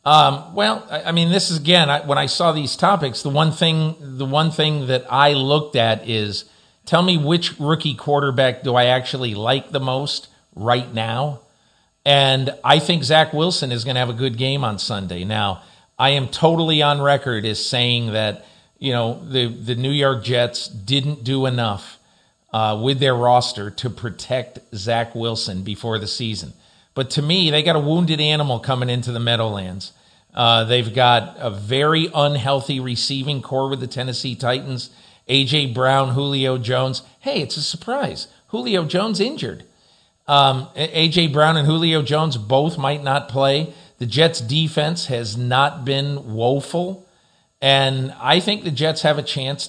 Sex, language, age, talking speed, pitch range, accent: male, English, 50-69, 170 wpm, 120-150 Hz, American